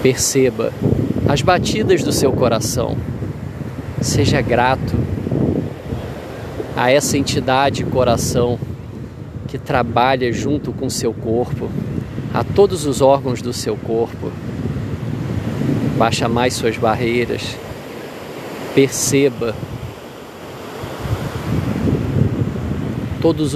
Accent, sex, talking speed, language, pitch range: Brazilian, male, 80 wpm, Portuguese, 120-145 Hz